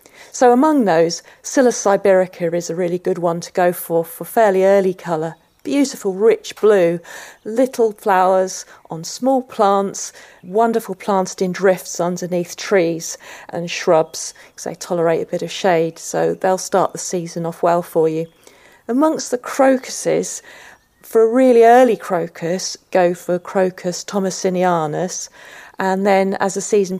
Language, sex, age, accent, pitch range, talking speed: English, female, 40-59, British, 175-210 Hz, 145 wpm